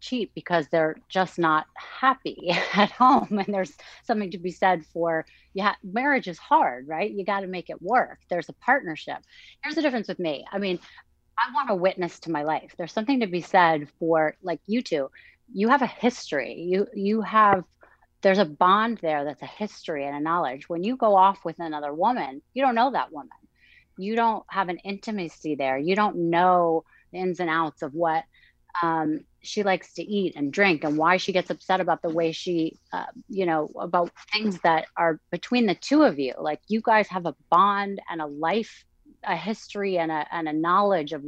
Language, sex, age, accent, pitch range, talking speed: English, female, 30-49, American, 165-210 Hz, 205 wpm